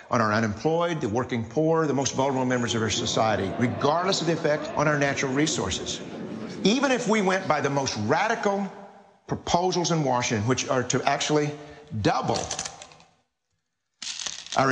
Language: English